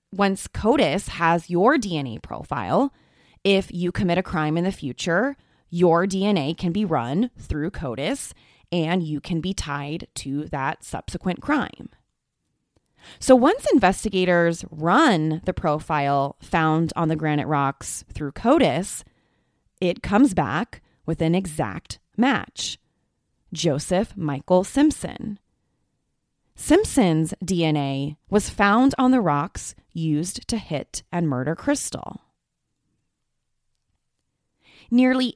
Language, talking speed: English, 115 wpm